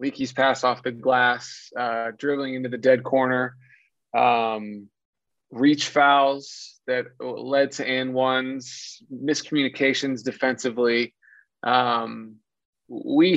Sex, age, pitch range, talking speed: male, 20-39, 115-135 Hz, 105 wpm